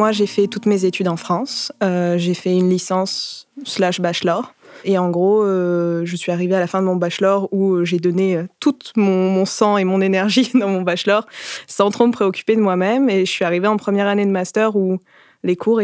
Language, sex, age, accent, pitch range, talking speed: French, female, 20-39, French, 180-210 Hz, 225 wpm